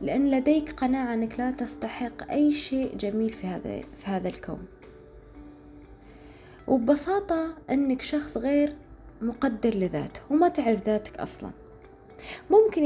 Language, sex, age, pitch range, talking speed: Arabic, female, 20-39, 210-275 Hz, 115 wpm